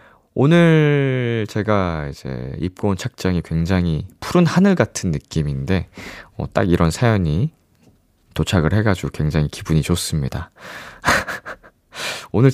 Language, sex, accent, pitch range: Korean, male, native, 90-140 Hz